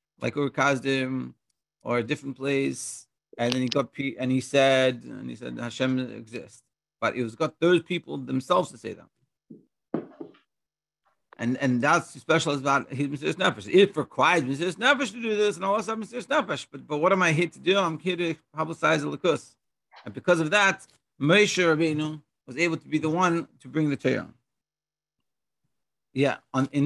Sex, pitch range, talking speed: male, 135-180 Hz, 185 wpm